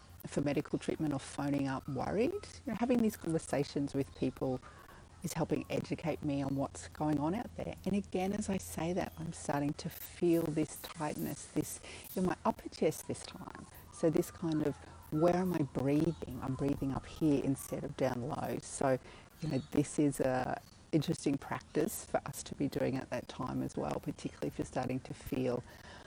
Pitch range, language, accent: 135-165 Hz, English, Australian